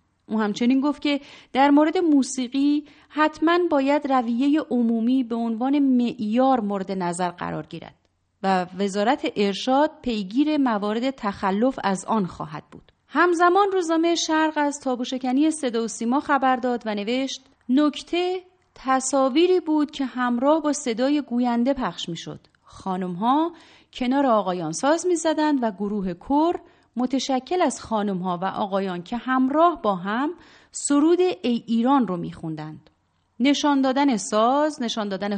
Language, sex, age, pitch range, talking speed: Persian, female, 30-49, 210-300 Hz, 130 wpm